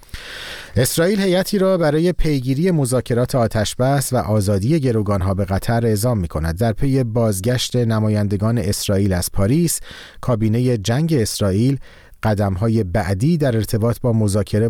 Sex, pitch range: male, 100-125 Hz